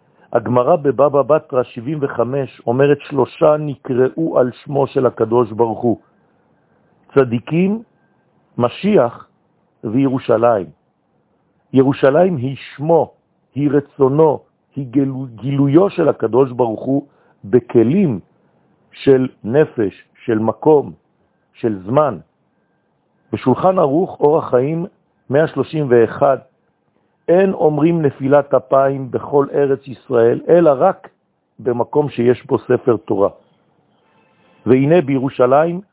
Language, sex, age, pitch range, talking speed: French, male, 50-69, 125-155 Hz, 90 wpm